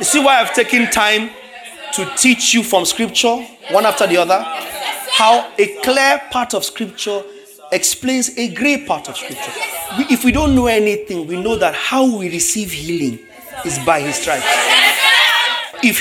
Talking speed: 170 wpm